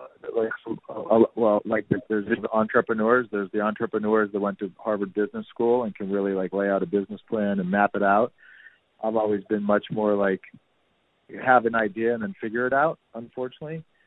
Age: 40-59